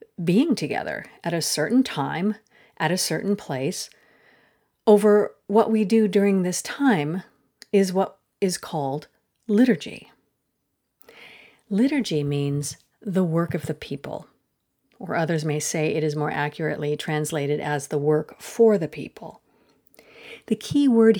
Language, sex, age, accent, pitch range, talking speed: English, female, 40-59, American, 160-220 Hz, 135 wpm